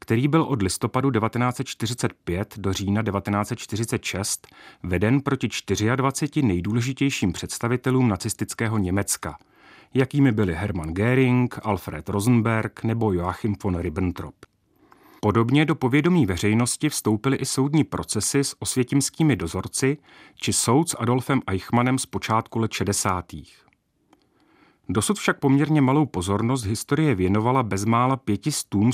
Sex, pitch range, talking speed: male, 100-135 Hz, 110 wpm